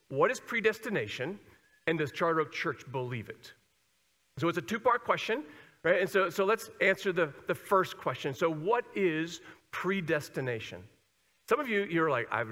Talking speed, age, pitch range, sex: 170 wpm, 50-69, 140-200 Hz, male